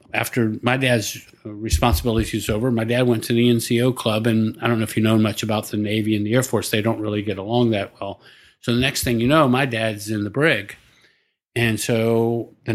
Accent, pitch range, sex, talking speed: American, 110-125 Hz, male, 235 wpm